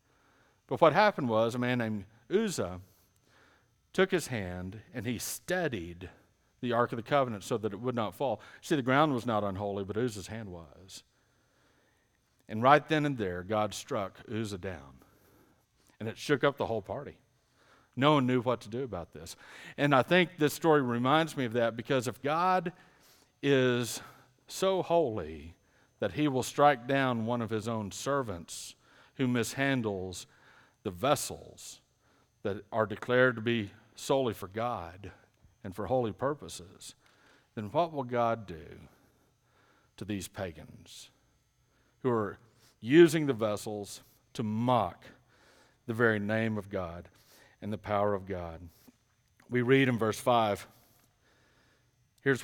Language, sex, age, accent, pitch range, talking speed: English, male, 50-69, American, 105-130 Hz, 150 wpm